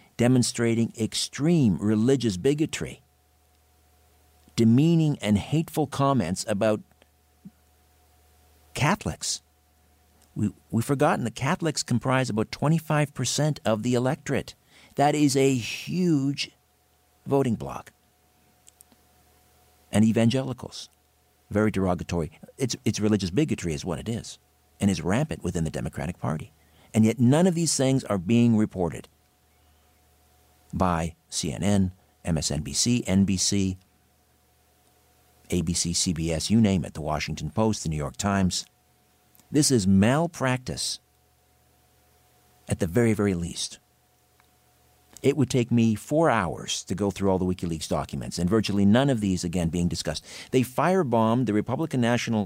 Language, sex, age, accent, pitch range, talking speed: English, male, 50-69, American, 75-120 Hz, 120 wpm